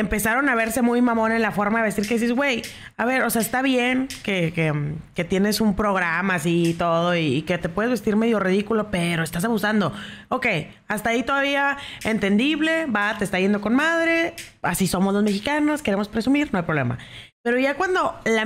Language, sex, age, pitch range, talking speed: Spanish, female, 30-49, 180-250 Hz, 205 wpm